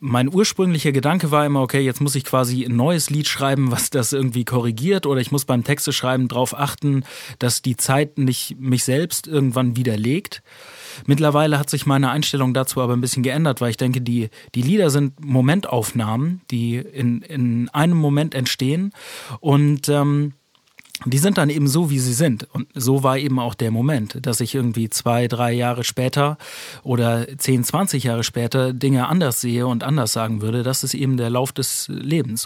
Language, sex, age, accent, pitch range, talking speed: German, male, 30-49, German, 120-145 Hz, 185 wpm